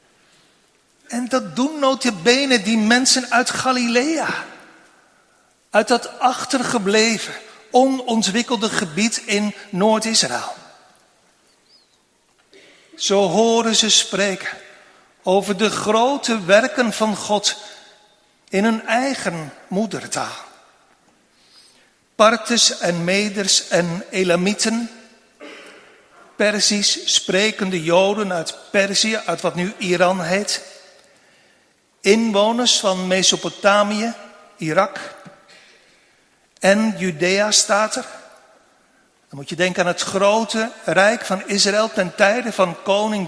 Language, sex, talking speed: Dutch, male, 90 wpm